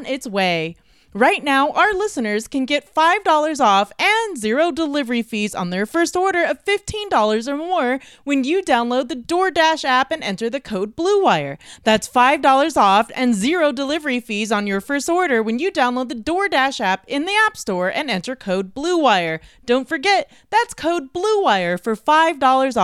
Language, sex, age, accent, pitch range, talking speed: English, female, 30-49, American, 195-320 Hz, 170 wpm